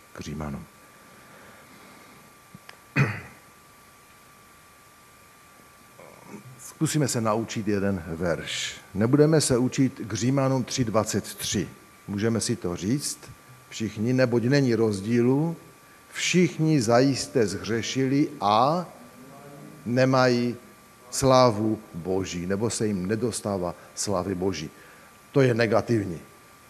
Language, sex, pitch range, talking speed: Czech, male, 105-145 Hz, 80 wpm